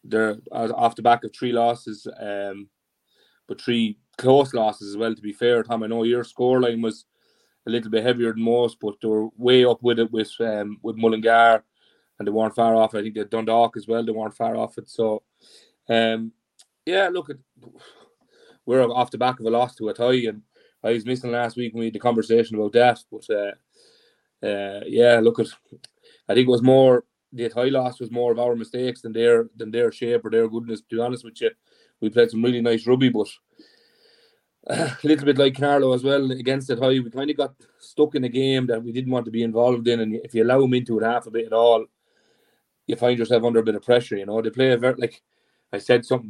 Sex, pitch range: male, 110-125 Hz